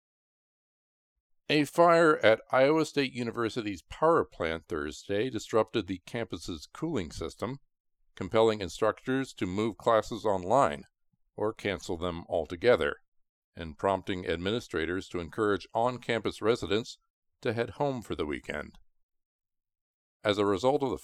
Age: 50-69